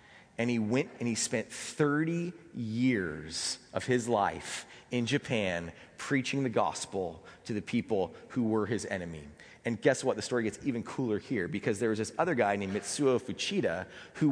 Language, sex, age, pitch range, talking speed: English, male, 30-49, 120-160 Hz, 175 wpm